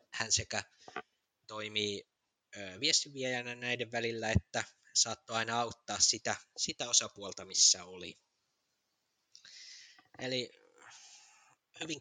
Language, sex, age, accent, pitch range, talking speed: Finnish, male, 20-39, native, 110-135 Hz, 85 wpm